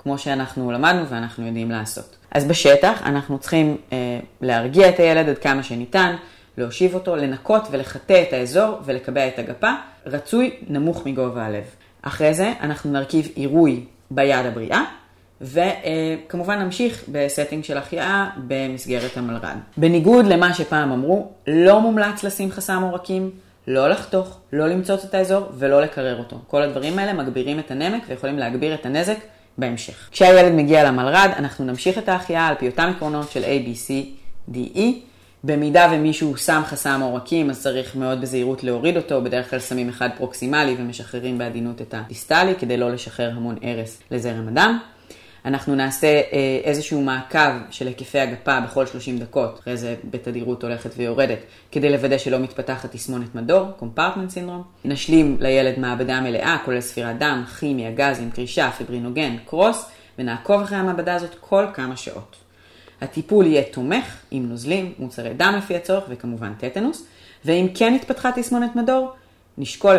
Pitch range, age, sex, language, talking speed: 125-175 Hz, 30-49, female, Hebrew, 150 wpm